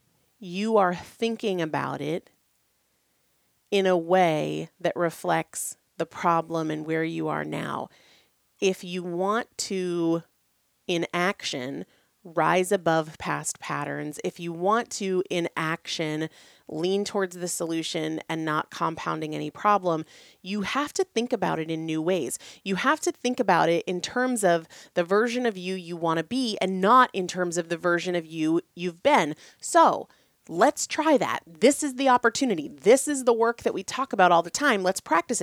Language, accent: English, American